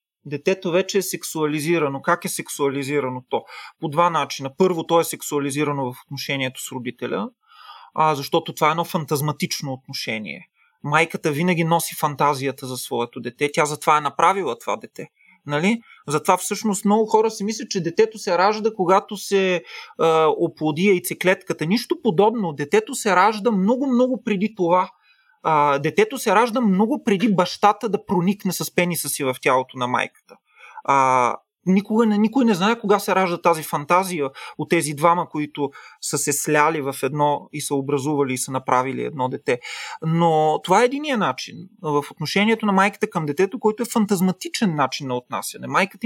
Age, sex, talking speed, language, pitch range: 30-49, male, 160 wpm, Bulgarian, 145-210 Hz